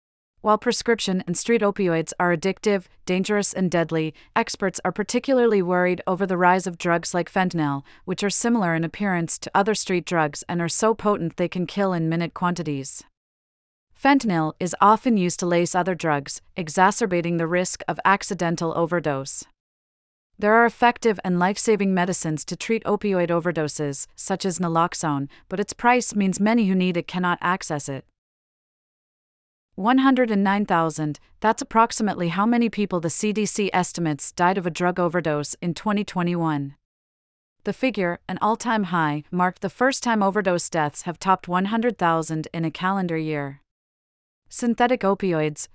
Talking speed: 150 wpm